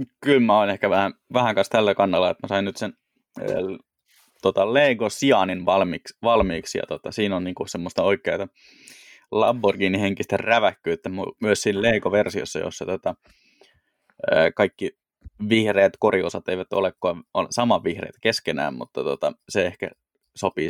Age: 20-39